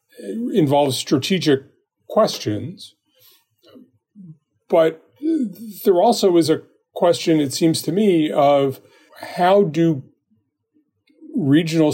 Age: 40-59